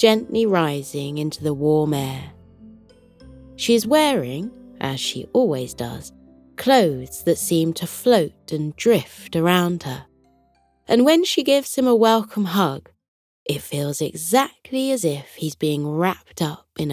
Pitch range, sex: 140-230 Hz, female